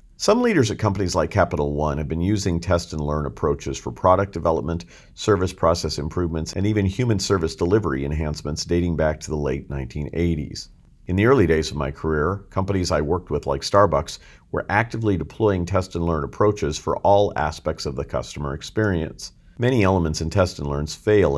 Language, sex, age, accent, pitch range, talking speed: English, male, 50-69, American, 75-95 Hz, 185 wpm